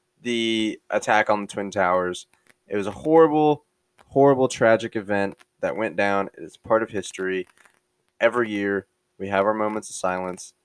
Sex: male